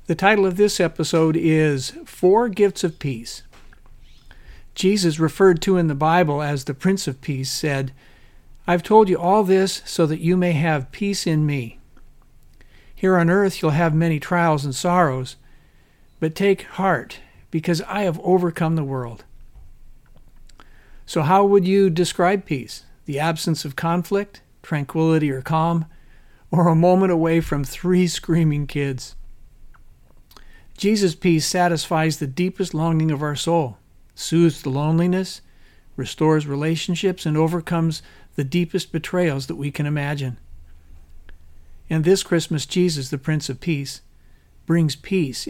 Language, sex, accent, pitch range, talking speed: English, male, American, 135-180 Hz, 140 wpm